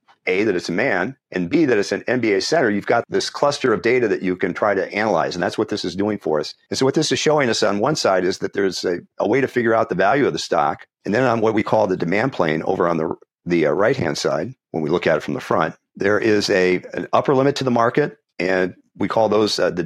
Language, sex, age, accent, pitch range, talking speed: English, male, 50-69, American, 95-125 Hz, 285 wpm